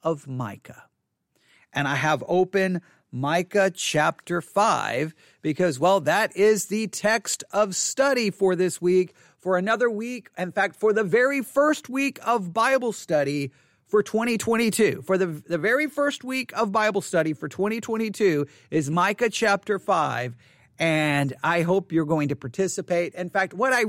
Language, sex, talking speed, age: English, male, 155 wpm, 40-59